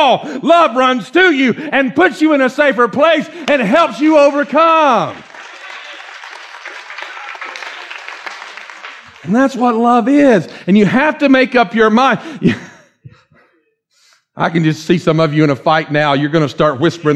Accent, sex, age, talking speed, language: American, male, 50-69, 155 wpm, English